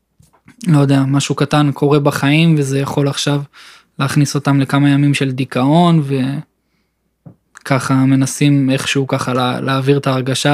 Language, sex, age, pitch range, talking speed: Hebrew, male, 20-39, 130-140 Hz, 125 wpm